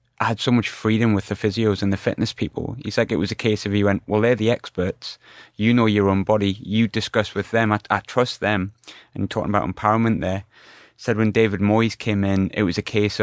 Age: 20-39